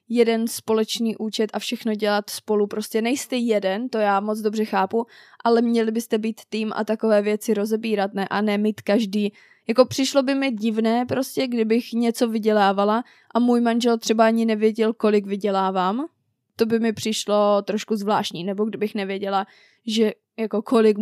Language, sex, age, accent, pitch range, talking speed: Czech, female, 20-39, native, 210-240 Hz, 165 wpm